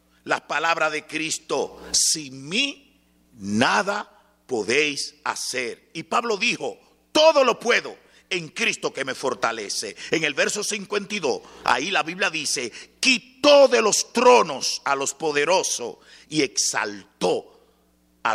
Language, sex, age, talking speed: English, male, 50-69, 125 wpm